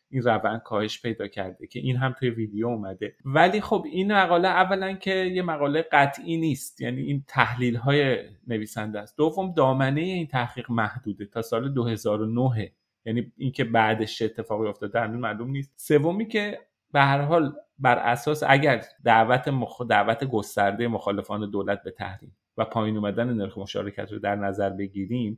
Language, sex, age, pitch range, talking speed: Persian, male, 30-49, 110-145 Hz, 160 wpm